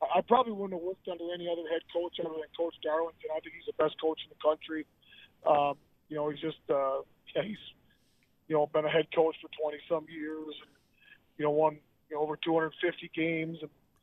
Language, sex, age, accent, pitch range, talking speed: English, male, 20-39, American, 155-180 Hz, 220 wpm